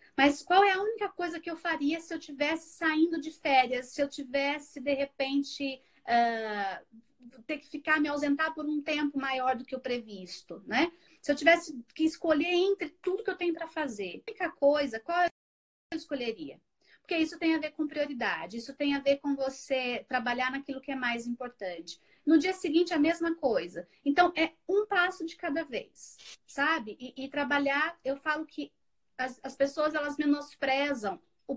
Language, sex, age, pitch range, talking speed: Portuguese, female, 30-49, 265-330 Hz, 190 wpm